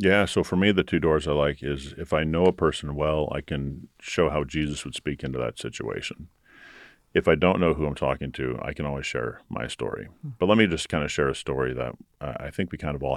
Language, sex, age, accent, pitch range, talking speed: English, male, 40-59, American, 70-80 Hz, 255 wpm